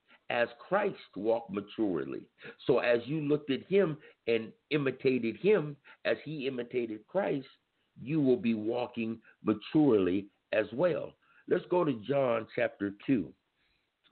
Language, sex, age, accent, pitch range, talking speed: English, male, 60-79, American, 95-140 Hz, 130 wpm